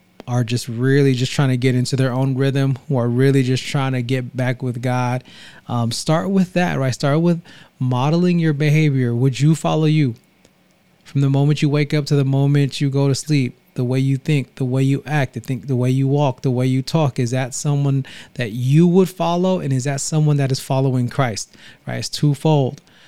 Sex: male